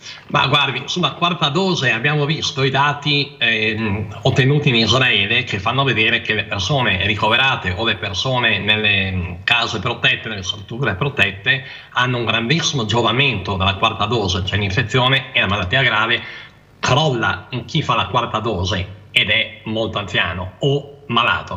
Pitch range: 110-140 Hz